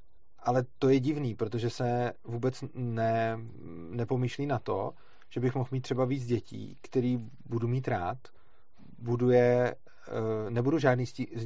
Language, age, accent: Czech, 30-49, native